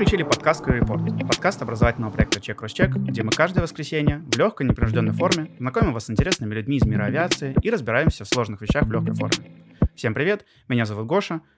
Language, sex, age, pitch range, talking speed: Russian, male, 20-39, 110-150 Hz, 190 wpm